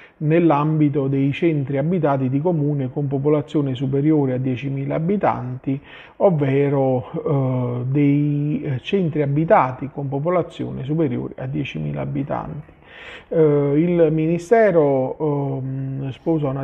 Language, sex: Italian, male